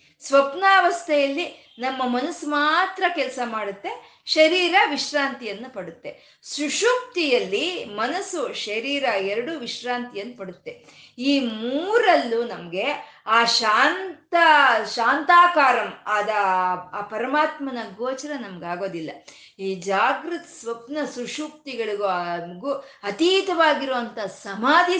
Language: Kannada